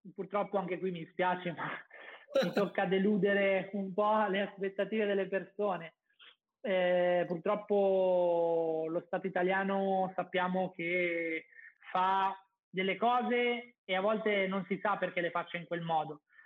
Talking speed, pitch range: 135 wpm, 175-195 Hz